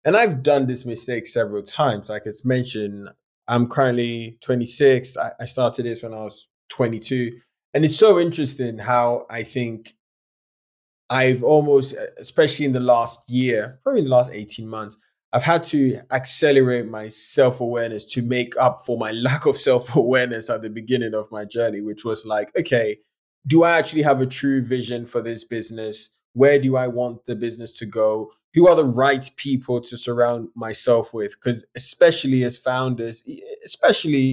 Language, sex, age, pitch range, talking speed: English, male, 20-39, 115-135 Hz, 170 wpm